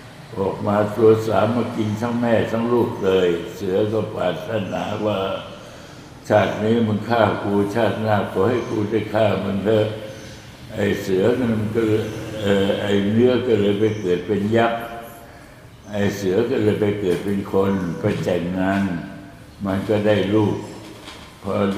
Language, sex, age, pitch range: Thai, male, 60-79, 100-110 Hz